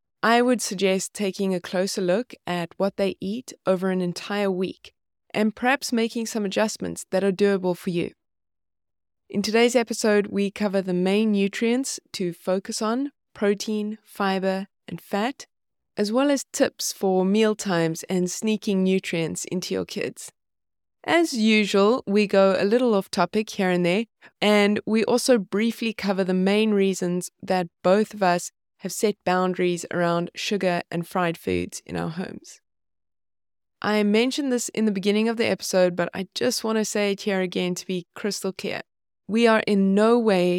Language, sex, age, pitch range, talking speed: English, female, 20-39, 180-220 Hz, 170 wpm